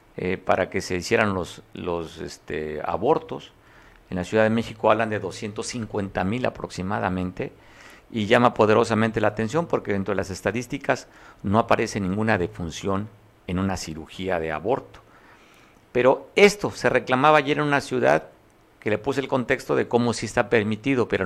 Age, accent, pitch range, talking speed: 50-69, Mexican, 105-130 Hz, 160 wpm